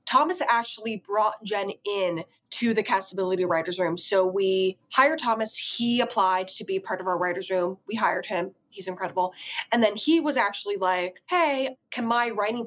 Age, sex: 20-39, female